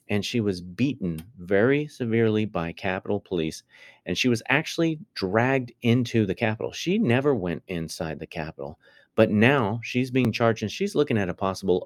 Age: 30-49